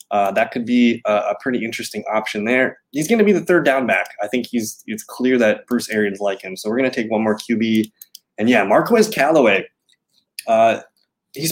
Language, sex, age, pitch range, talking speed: English, male, 20-39, 110-135 Hz, 205 wpm